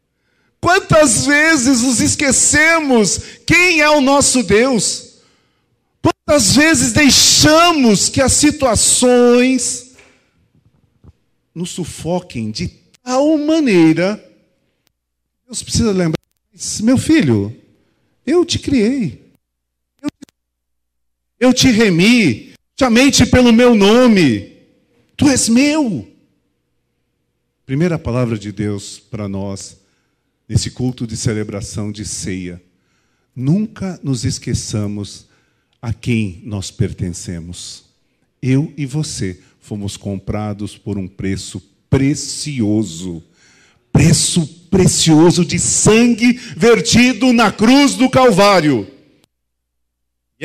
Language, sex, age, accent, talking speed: Portuguese, male, 50-69, Brazilian, 90 wpm